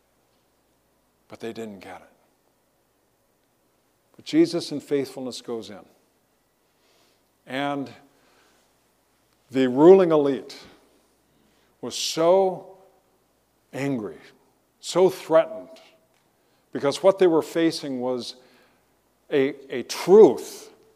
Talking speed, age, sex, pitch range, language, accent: 85 wpm, 50-69, male, 135-170 Hz, English, American